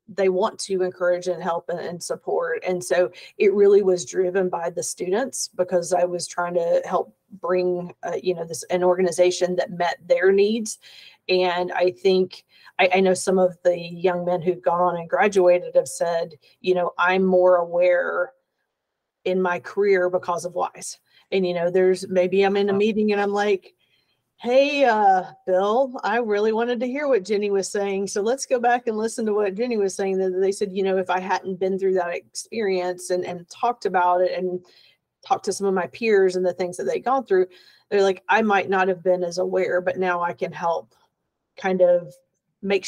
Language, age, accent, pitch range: English, 40-59, American, 180-200 Hz